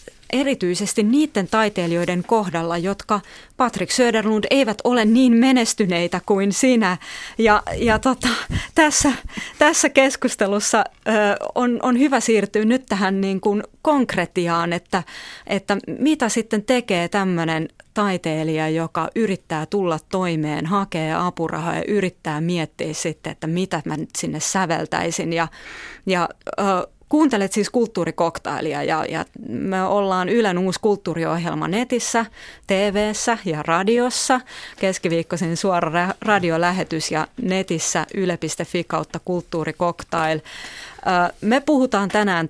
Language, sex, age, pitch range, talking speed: Finnish, female, 30-49, 165-220 Hz, 115 wpm